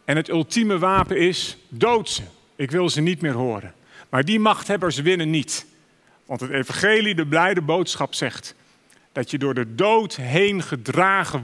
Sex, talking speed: male, 165 wpm